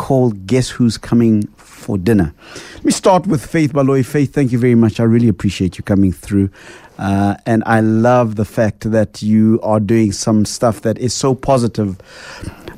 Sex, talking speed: male, 185 wpm